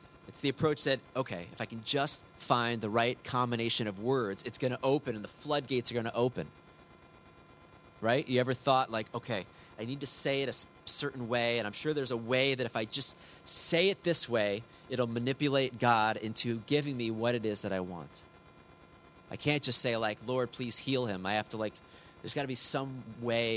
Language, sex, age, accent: English, male, 30-49, American